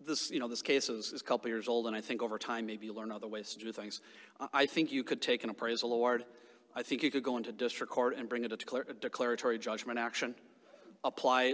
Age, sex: 30-49, male